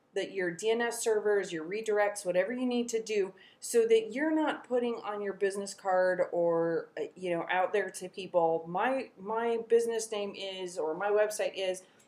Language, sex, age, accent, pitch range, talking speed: English, female, 30-49, American, 175-210 Hz, 180 wpm